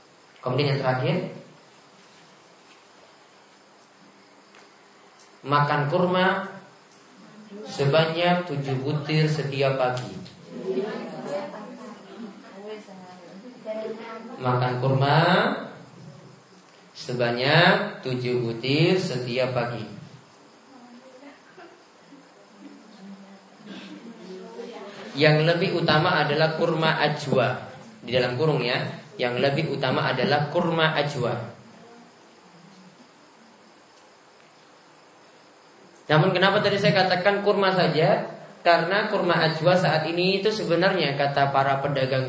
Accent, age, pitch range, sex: native, 30-49, 145-190 Hz, male